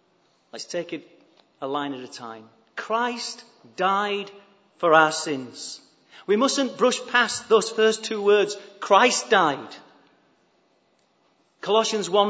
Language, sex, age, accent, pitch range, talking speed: English, male, 40-59, British, 190-235 Hz, 115 wpm